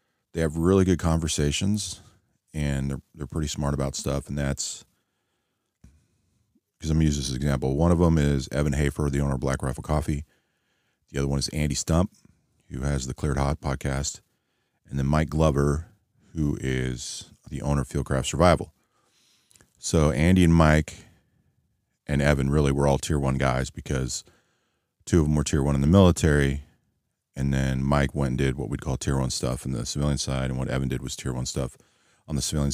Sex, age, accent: male, 40-59, American